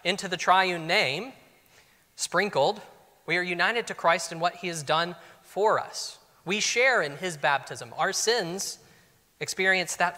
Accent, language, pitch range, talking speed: American, English, 160-190 Hz, 155 wpm